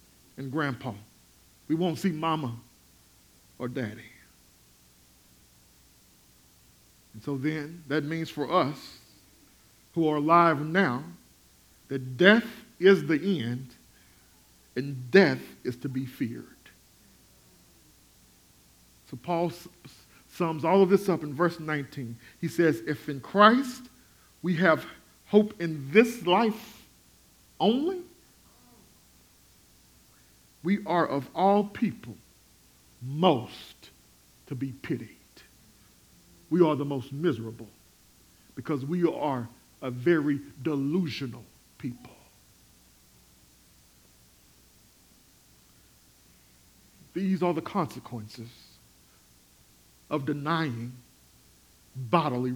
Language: English